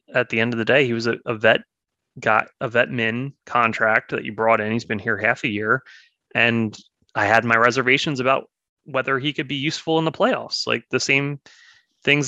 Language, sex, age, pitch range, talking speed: English, male, 20-39, 110-140 Hz, 210 wpm